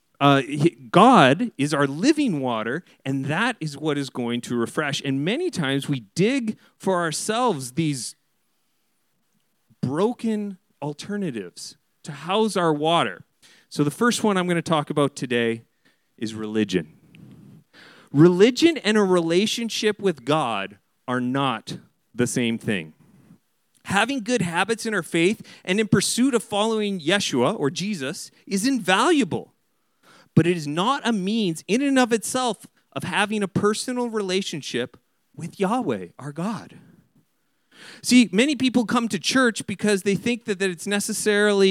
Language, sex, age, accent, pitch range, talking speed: English, male, 40-59, American, 150-220 Hz, 140 wpm